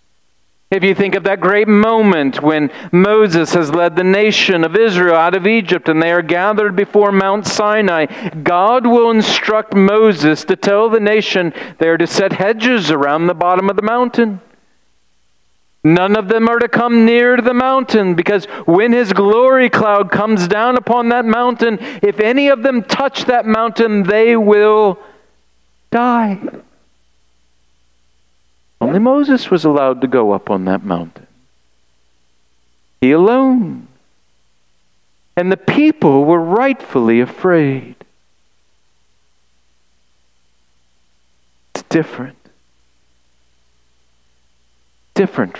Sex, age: male, 40-59